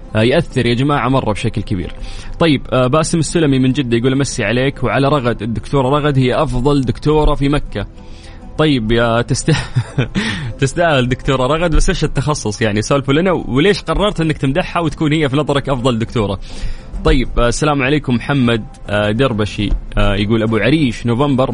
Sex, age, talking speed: male, 20-39, 150 wpm